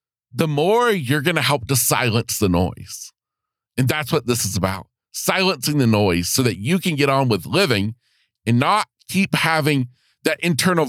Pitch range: 120-165 Hz